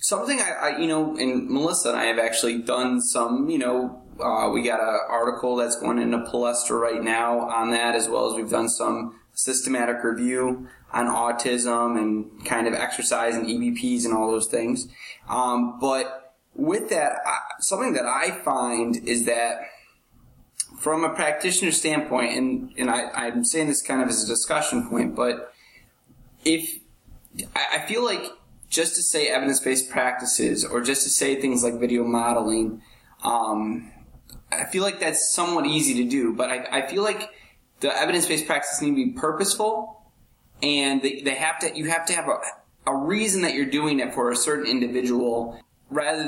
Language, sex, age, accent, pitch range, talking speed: English, male, 20-39, American, 120-155 Hz, 175 wpm